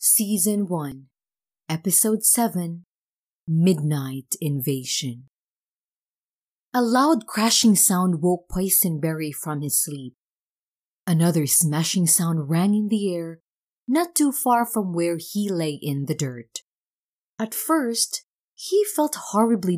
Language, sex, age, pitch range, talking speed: English, female, 30-49, 155-220 Hz, 110 wpm